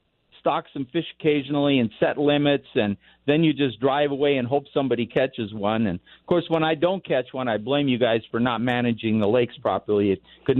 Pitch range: 120-160 Hz